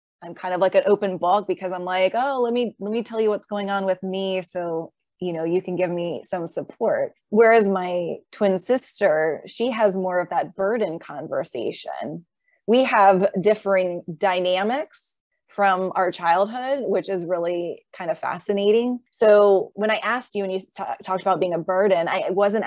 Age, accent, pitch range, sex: 20-39, American, 185-220 Hz, female